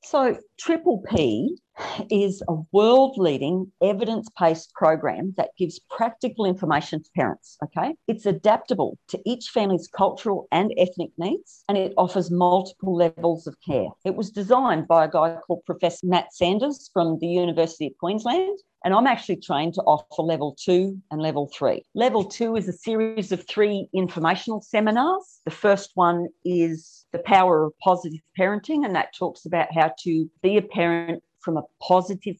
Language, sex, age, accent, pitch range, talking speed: English, female, 50-69, Australian, 165-200 Hz, 165 wpm